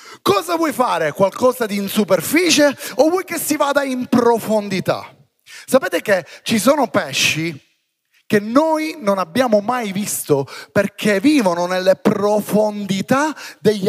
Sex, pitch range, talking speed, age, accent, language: male, 165-235 Hz, 130 wpm, 30-49, native, Italian